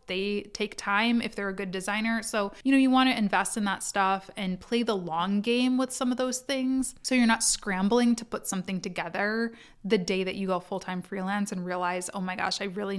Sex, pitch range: female, 190-230 Hz